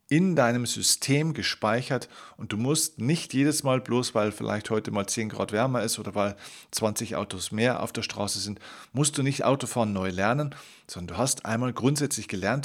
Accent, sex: German, male